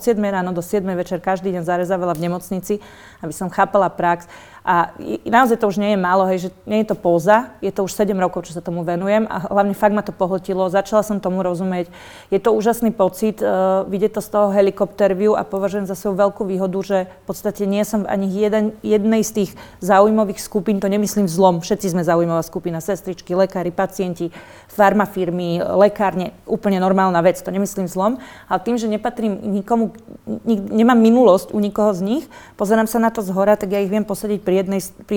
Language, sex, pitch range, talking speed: Slovak, female, 190-215 Hz, 200 wpm